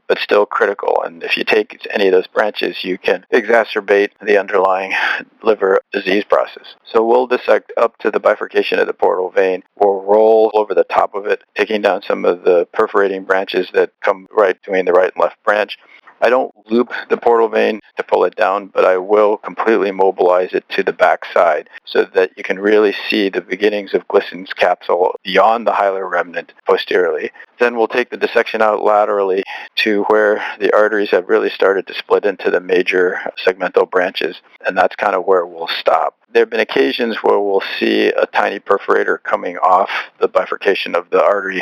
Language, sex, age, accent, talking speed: English, male, 40-59, American, 190 wpm